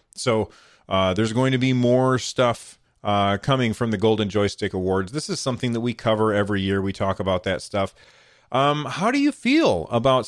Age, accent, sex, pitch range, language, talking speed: 30-49, American, male, 100-130 Hz, English, 200 wpm